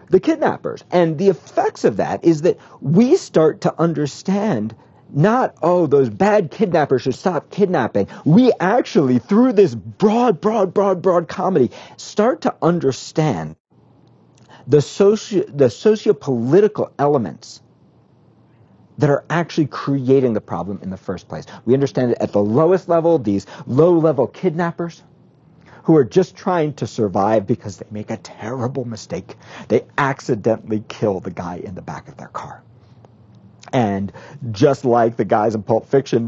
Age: 50-69